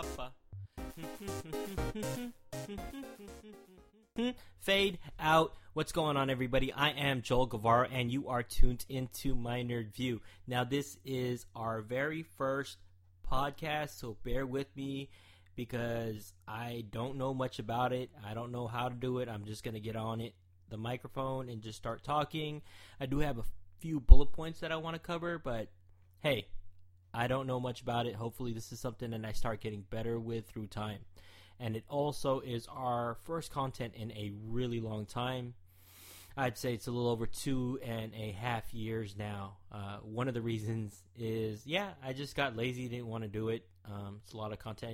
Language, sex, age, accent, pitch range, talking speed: English, male, 20-39, American, 105-130 Hz, 180 wpm